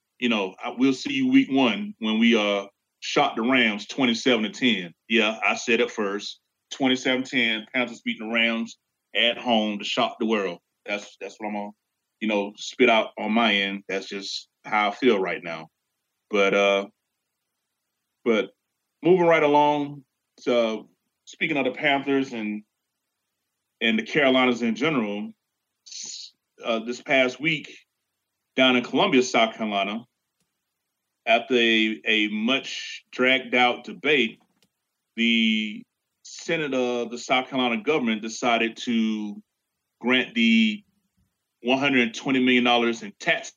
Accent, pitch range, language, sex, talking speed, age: American, 110-130 Hz, English, male, 140 wpm, 30-49